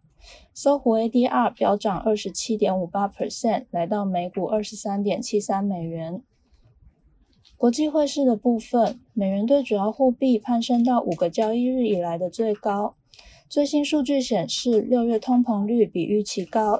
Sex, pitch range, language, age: female, 200-245 Hz, Chinese, 20-39